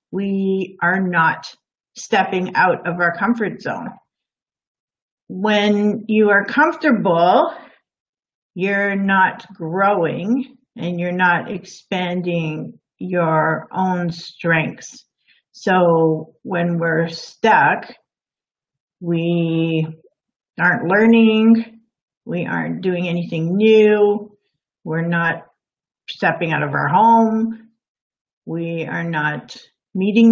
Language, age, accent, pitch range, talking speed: English, 50-69, American, 180-225 Hz, 90 wpm